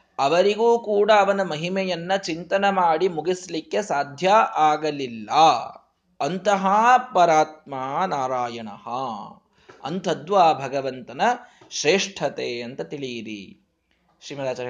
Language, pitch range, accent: Kannada, 155-235 Hz, native